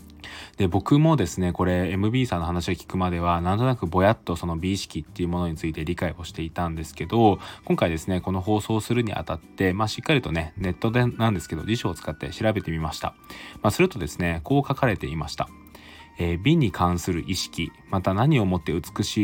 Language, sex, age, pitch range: Japanese, male, 20-39, 85-110 Hz